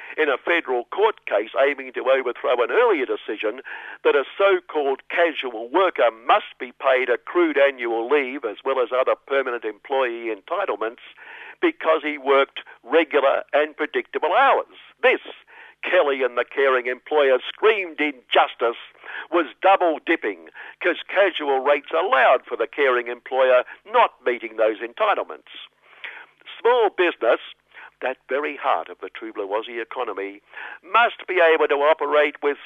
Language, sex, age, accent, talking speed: English, male, 60-79, British, 135 wpm